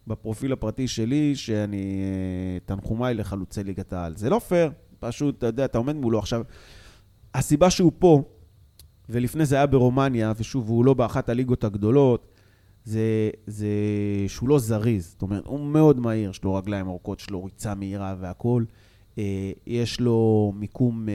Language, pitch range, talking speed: Hebrew, 105-150 Hz, 150 wpm